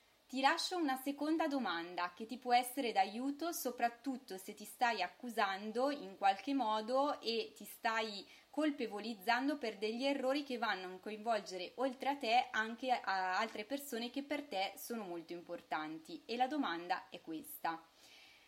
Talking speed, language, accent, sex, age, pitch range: 150 wpm, Italian, native, female, 20-39, 200-270 Hz